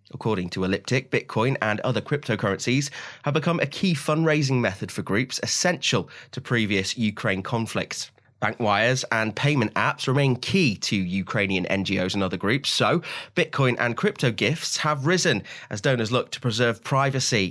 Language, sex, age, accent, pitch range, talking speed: English, male, 20-39, British, 105-135 Hz, 160 wpm